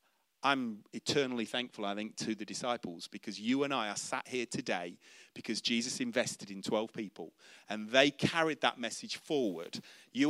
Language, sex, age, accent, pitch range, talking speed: English, male, 40-59, British, 115-180 Hz, 170 wpm